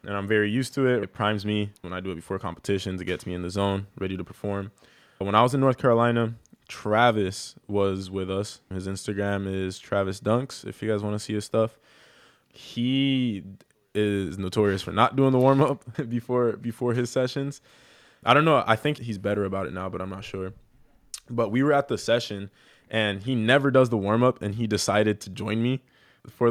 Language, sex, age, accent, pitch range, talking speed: English, male, 20-39, American, 100-120 Hz, 210 wpm